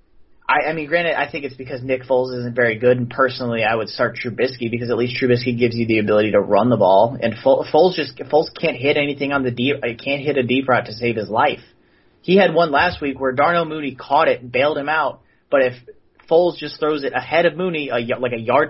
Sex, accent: male, American